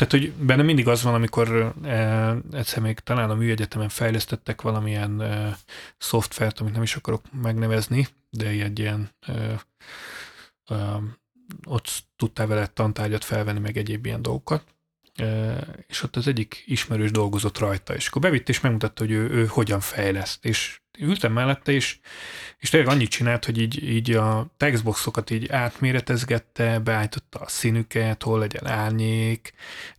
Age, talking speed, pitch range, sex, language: 30-49, 140 wpm, 110-130 Hz, male, Hungarian